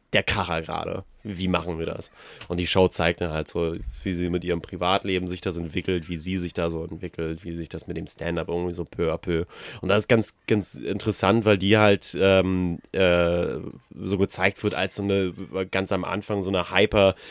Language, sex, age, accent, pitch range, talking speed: German, male, 30-49, German, 90-100 Hz, 210 wpm